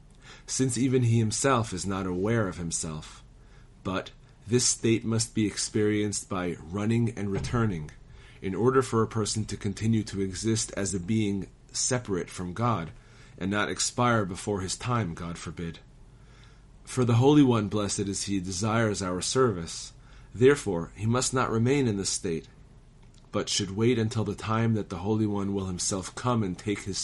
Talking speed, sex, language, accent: 170 wpm, male, English, American